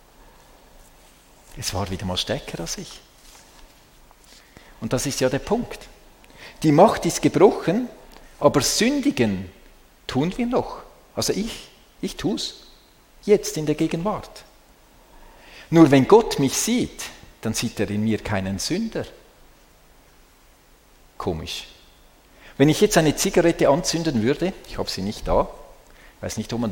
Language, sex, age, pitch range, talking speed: German, male, 50-69, 110-160 Hz, 135 wpm